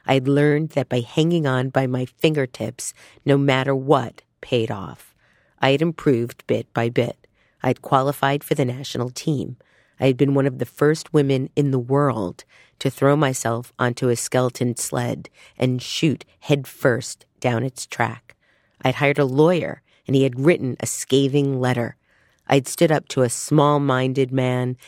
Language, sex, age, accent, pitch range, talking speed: English, female, 40-59, American, 125-145 Hz, 175 wpm